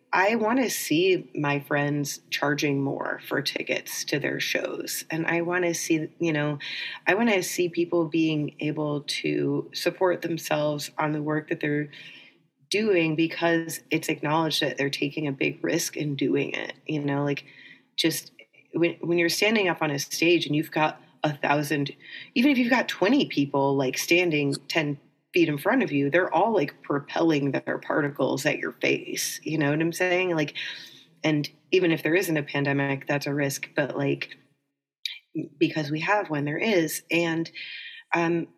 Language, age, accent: English, 30-49, American